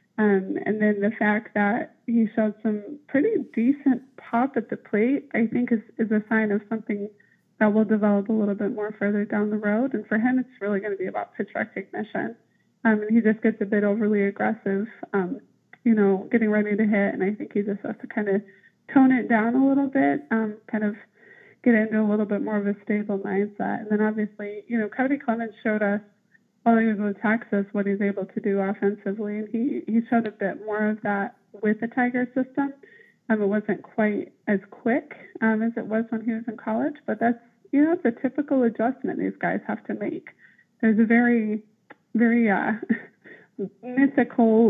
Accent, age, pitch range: American, 20-39, 210-235 Hz